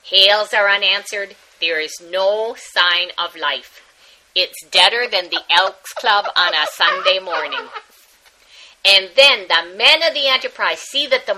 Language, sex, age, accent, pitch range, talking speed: English, female, 50-69, American, 220-305 Hz, 155 wpm